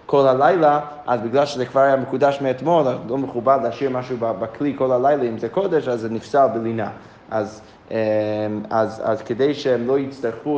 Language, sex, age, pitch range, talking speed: Hebrew, male, 20-39, 115-145 Hz, 175 wpm